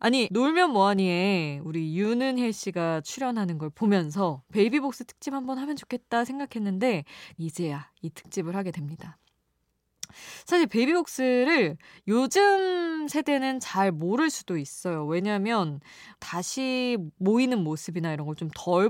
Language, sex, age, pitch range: Korean, female, 20-39, 165-245 Hz